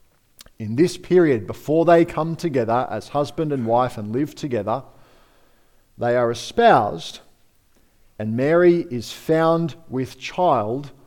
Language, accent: English, Australian